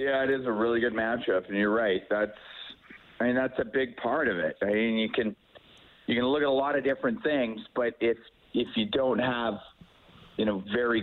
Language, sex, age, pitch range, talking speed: English, male, 40-59, 110-130 Hz, 225 wpm